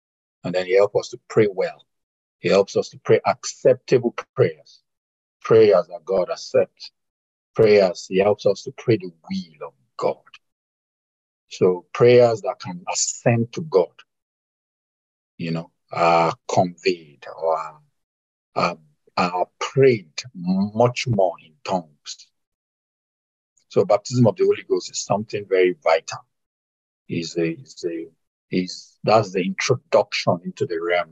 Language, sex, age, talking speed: English, male, 50-69, 135 wpm